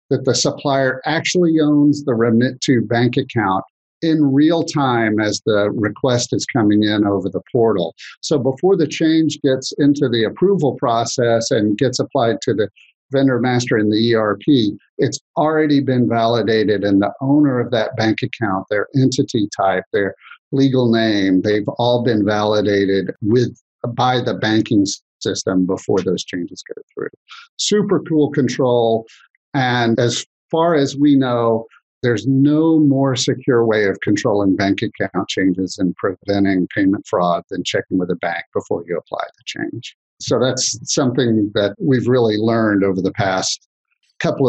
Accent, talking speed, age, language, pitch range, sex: American, 155 wpm, 50-69, English, 110-145 Hz, male